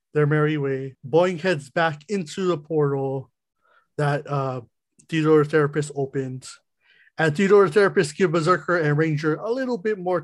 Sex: male